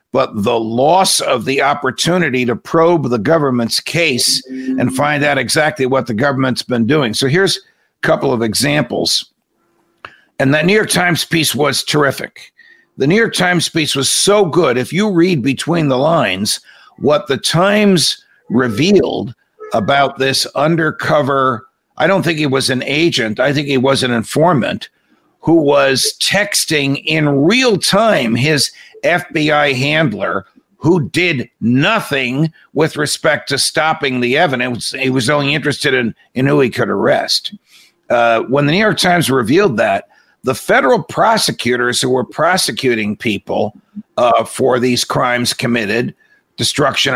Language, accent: English, American